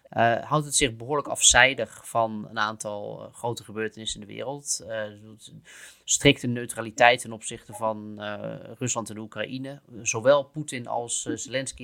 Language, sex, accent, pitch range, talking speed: Dutch, male, Dutch, 110-125 Hz, 150 wpm